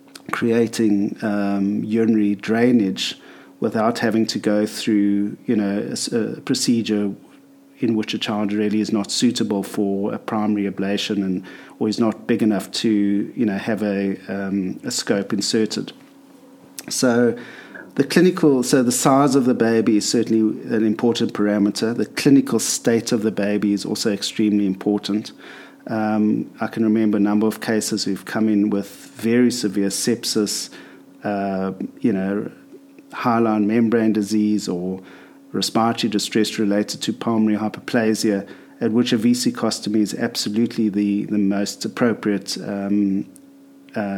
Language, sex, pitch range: English, male, 100-120 Hz